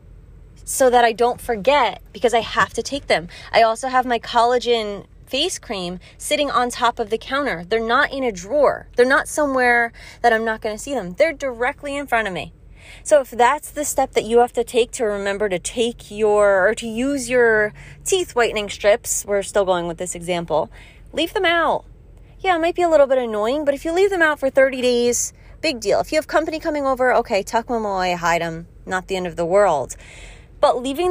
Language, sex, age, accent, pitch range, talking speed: English, female, 20-39, American, 200-265 Hz, 220 wpm